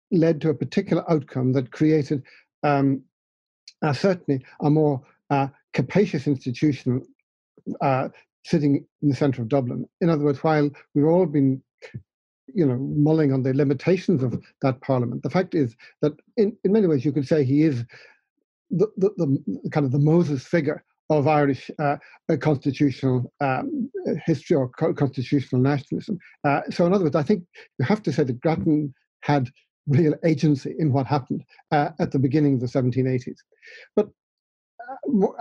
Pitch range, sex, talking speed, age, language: 140-175 Hz, male, 165 wpm, 60-79, English